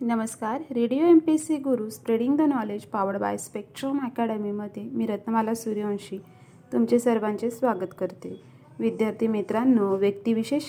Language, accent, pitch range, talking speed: Marathi, native, 215-255 Hz, 125 wpm